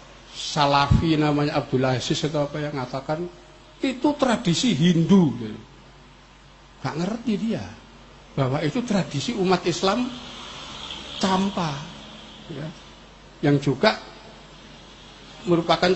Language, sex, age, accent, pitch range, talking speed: Indonesian, male, 50-69, native, 135-175 Hz, 90 wpm